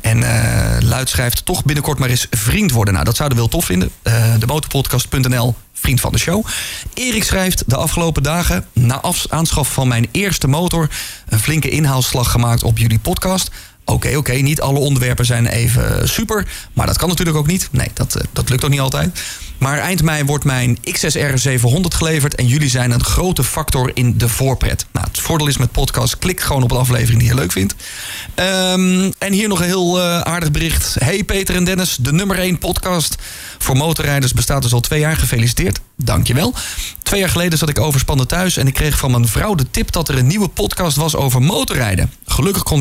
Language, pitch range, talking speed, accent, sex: Dutch, 120-165 Hz, 205 wpm, Dutch, male